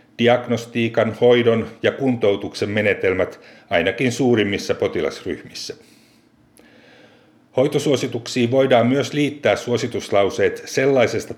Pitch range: 110-135 Hz